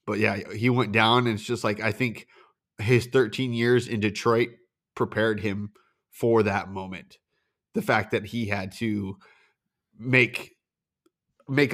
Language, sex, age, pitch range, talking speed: English, male, 20-39, 105-130 Hz, 150 wpm